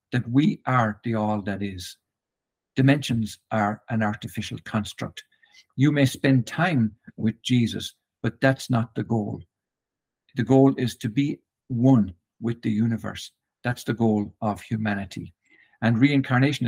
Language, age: English, 60-79